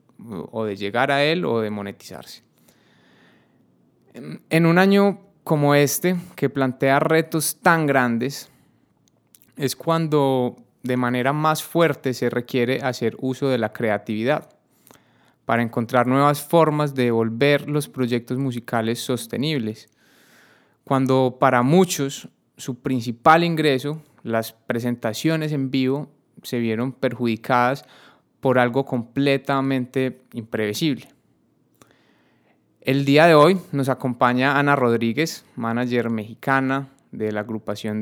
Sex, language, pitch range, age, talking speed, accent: male, Spanish, 120-145 Hz, 20-39, 110 wpm, Colombian